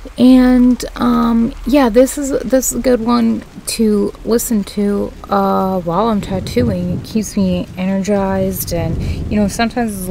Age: 20-39